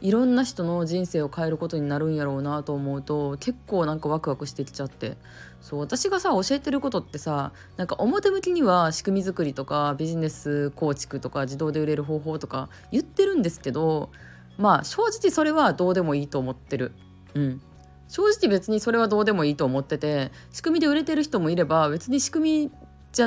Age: 20-39